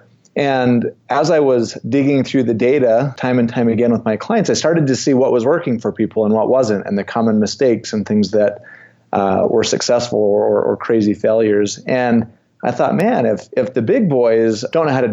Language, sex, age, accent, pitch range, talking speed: English, male, 30-49, American, 110-130 Hz, 215 wpm